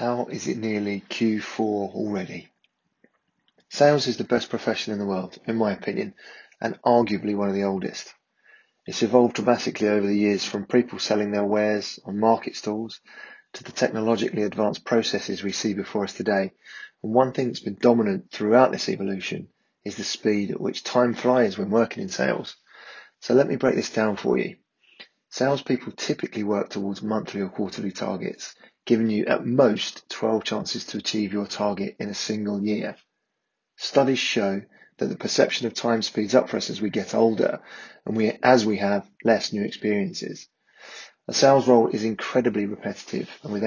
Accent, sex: British, male